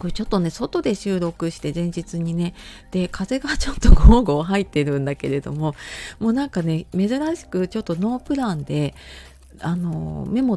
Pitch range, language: 150-210 Hz, Japanese